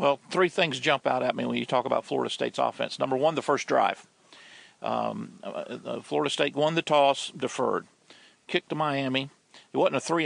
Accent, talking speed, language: American, 195 wpm, English